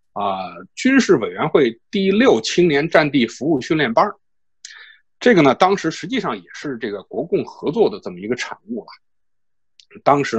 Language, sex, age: Chinese, male, 50-69